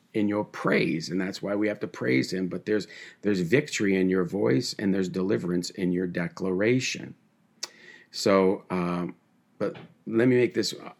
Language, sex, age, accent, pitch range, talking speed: English, male, 50-69, American, 90-100 Hz, 170 wpm